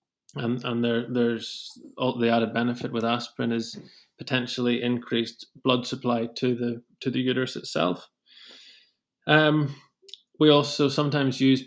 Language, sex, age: English, male, 20-39